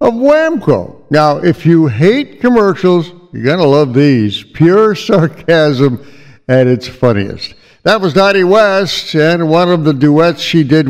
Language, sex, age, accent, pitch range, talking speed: English, male, 60-79, American, 135-190 Hz, 155 wpm